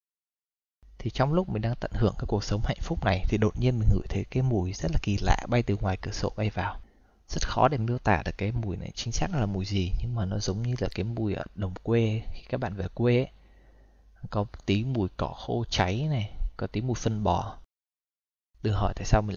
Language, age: Vietnamese, 20-39